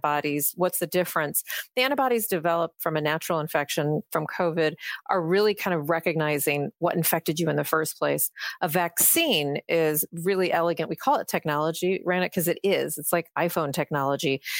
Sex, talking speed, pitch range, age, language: female, 175 wpm, 155-185 Hz, 40-59, English